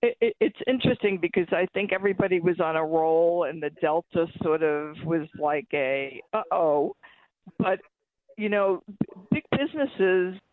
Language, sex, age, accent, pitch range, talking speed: English, female, 50-69, American, 170-215 Hz, 140 wpm